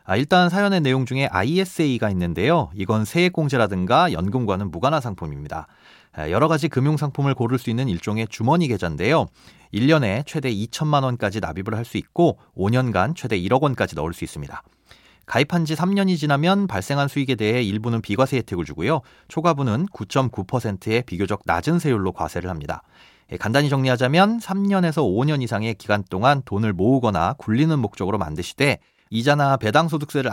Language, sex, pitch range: Korean, male, 105-155 Hz